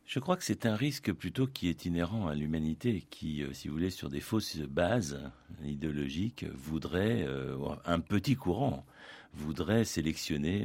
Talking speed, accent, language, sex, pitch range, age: 165 wpm, French, French, male, 75-100 Hz, 50-69